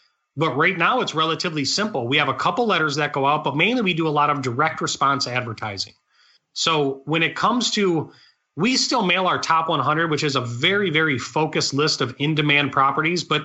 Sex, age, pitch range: male, 30-49, 150-200 Hz